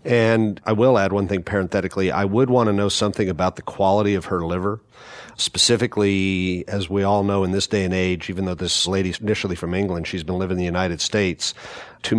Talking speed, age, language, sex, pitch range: 215 wpm, 40-59, English, male, 90-100 Hz